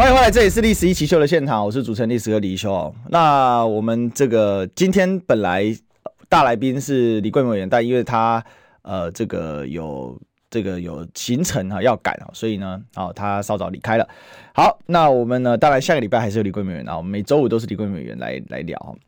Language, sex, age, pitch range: Chinese, male, 20-39, 115-190 Hz